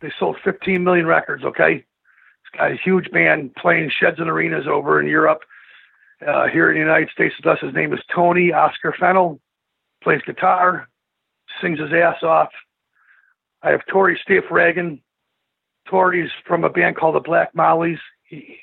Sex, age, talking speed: male, 50-69, 160 wpm